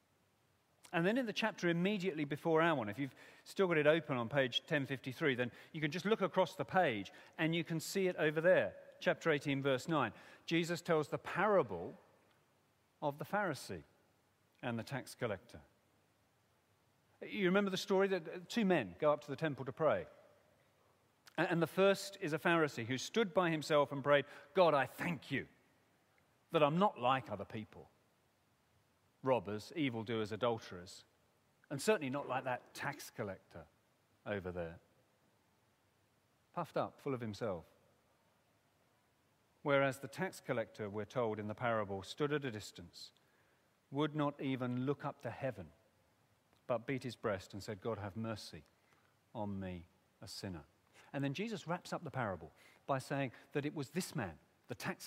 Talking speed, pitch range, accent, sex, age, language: 165 wpm, 110-160 Hz, British, male, 40-59, English